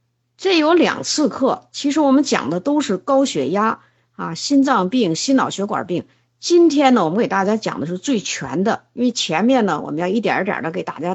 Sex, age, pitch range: female, 50-69, 185-275 Hz